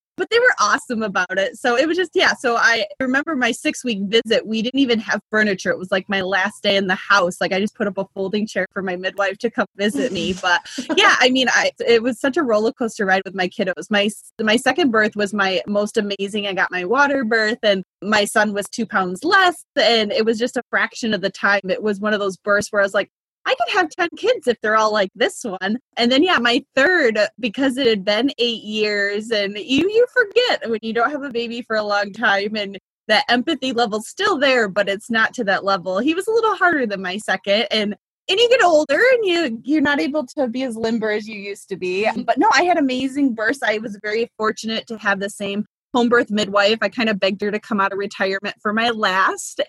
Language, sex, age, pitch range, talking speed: English, female, 20-39, 200-265 Hz, 250 wpm